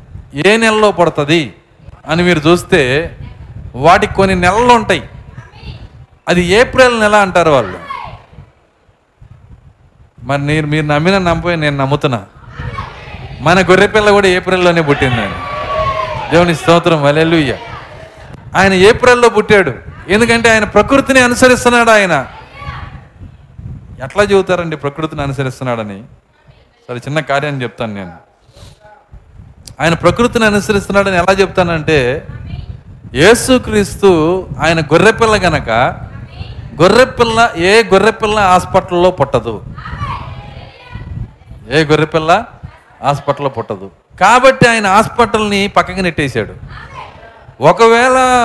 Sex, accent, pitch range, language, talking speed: male, native, 140-210 Hz, Telugu, 90 wpm